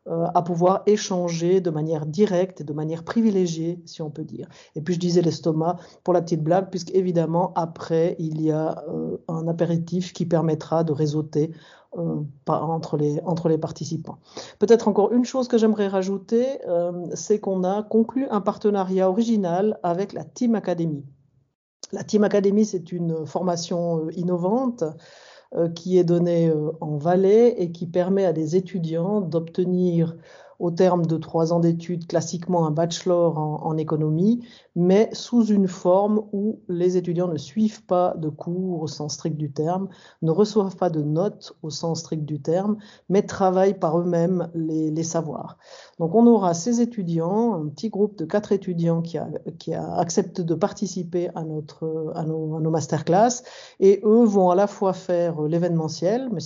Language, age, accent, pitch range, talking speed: French, 40-59, French, 160-195 Hz, 165 wpm